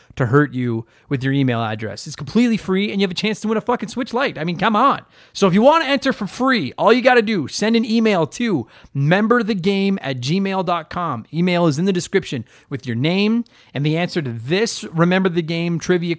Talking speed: 235 wpm